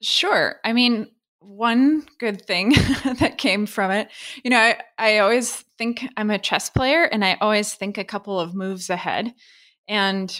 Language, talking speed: English, 175 wpm